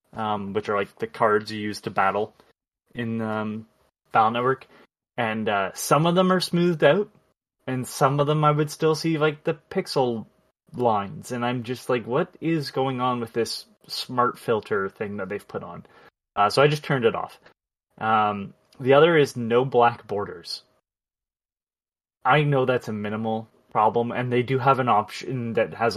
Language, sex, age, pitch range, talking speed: English, male, 20-39, 115-140 Hz, 185 wpm